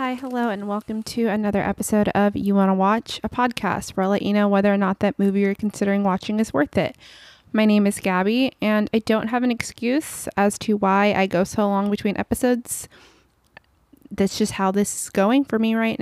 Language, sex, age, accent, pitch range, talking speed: English, female, 20-39, American, 195-230 Hz, 215 wpm